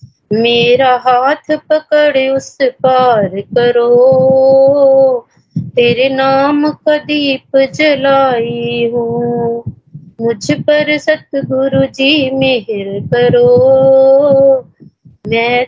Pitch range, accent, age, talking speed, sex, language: 230-275 Hz, native, 20-39, 75 wpm, female, Hindi